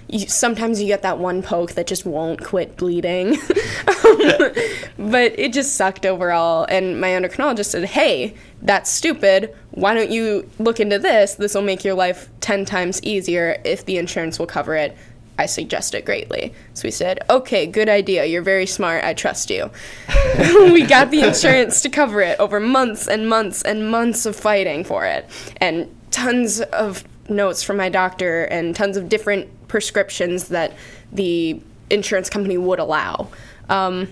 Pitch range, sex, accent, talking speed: 175-230 Hz, female, American, 170 wpm